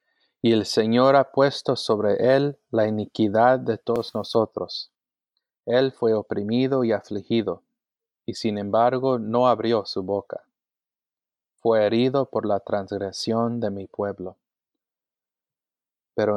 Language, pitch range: English, 105-125 Hz